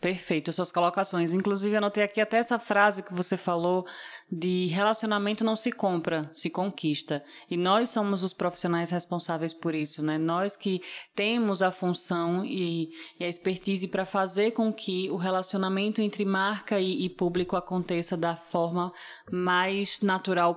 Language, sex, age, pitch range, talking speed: Portuguese, female, 20-39, 175-200 Hz, 155 wpm